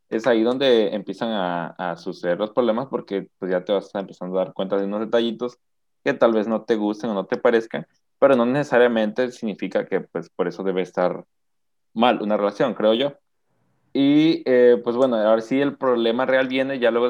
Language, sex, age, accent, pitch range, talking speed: Spanish, male, 20-39, Mexican, 100-125 Hz, 210 wpm